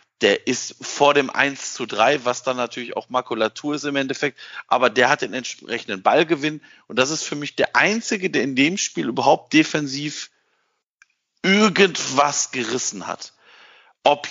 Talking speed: 160 wpm